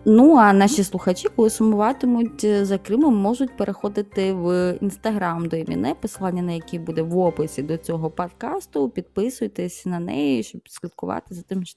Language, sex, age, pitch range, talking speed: Ukrainian, female, 20-39, 160-210 Hz, 160 wpm